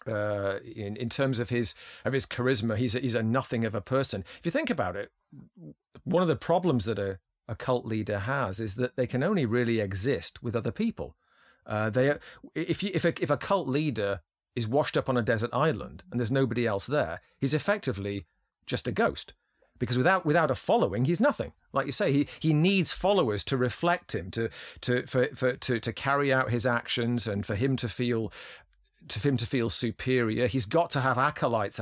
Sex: male